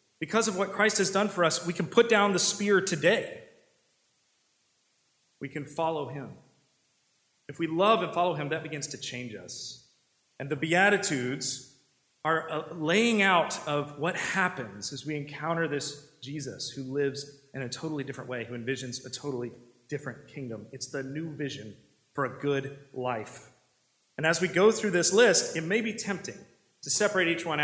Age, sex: 30-49, male